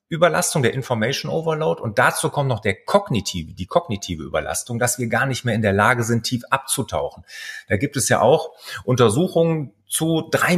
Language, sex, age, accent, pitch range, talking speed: German, male, 30-49, German, 105-140 Hz, 180 wpm